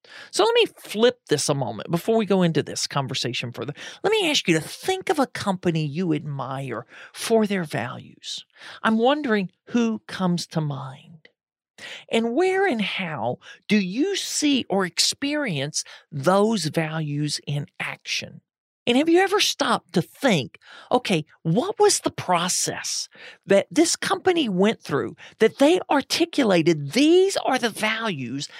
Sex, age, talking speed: male, 40-59, 150 wpm